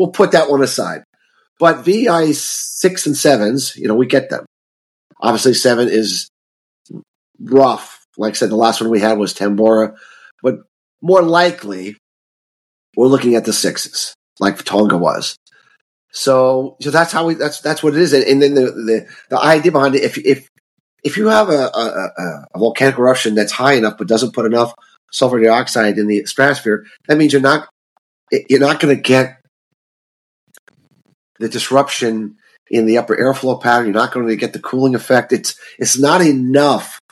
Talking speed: 175 wpm